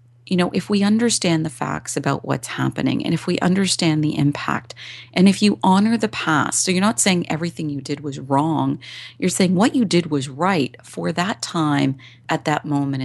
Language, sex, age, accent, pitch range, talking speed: English, female, 40-59, American, 140-195 Hz, 200 wpm